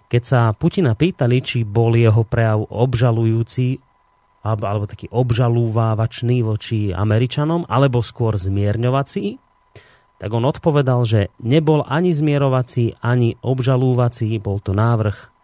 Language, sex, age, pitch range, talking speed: Slovak, male, 30-49, 110-135 Hz, 115 wpm